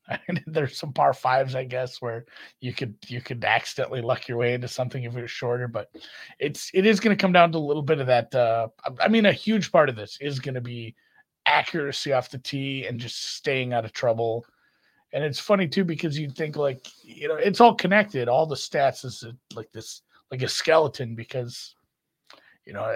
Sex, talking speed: male, 225 wpm